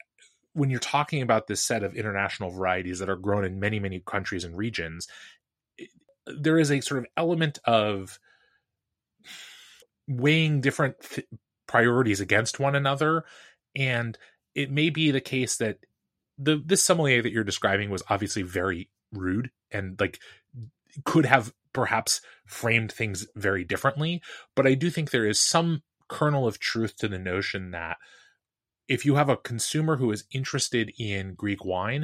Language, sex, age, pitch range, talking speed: English, male, 20-39, 100-135 Hz, 155 wpm